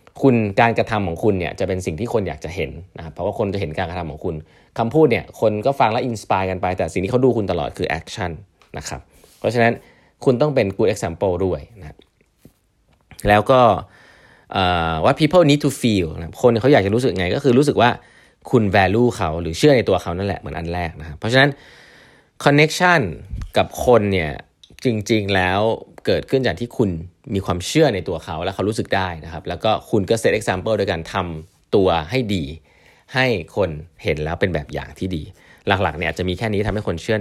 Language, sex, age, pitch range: Thai, male, 20-39, 85-120 Hz